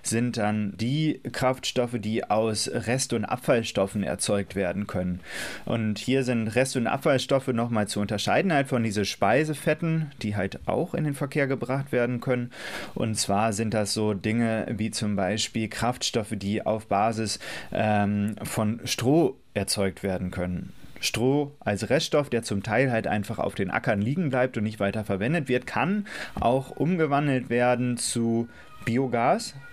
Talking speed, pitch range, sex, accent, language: 155 wpm, 105-130 Hz, male, German, English